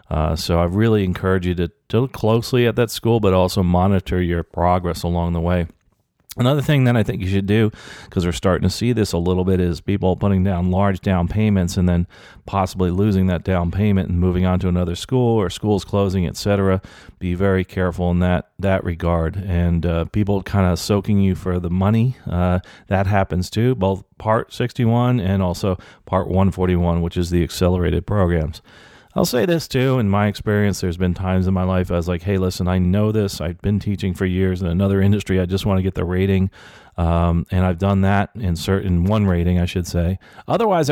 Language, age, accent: English, 40-59, American